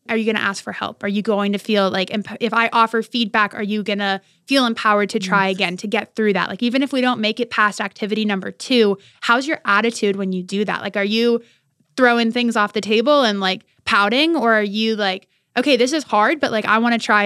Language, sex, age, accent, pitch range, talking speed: English, female, 20-39, American, 195-225 Hz, 255 wpm